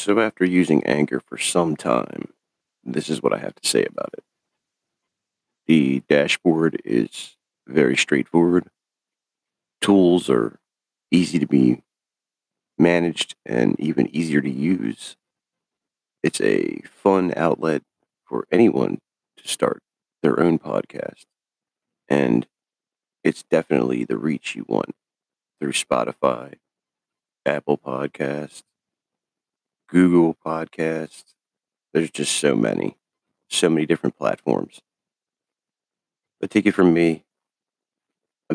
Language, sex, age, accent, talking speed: English, male, 40-59, American, 110 wpm